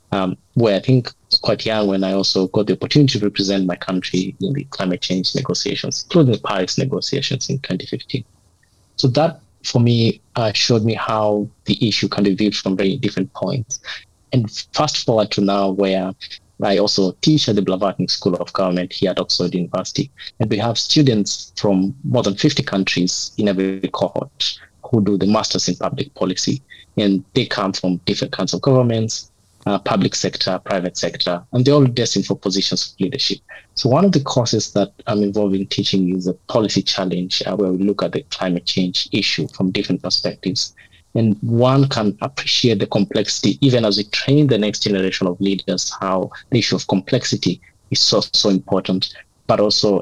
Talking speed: 185 wpm